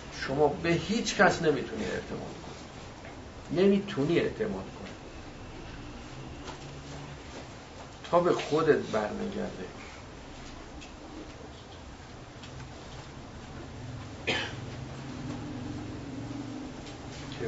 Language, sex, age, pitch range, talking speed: Persian, male, 50-69, 110-145 Hz, 50 wpm